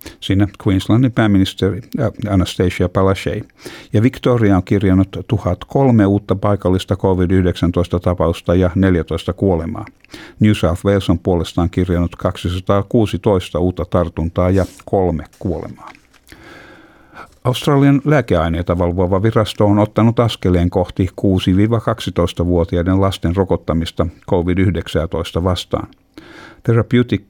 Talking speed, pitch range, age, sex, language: 95 wpm, 90-105 Hz, 60-79, male, Finnish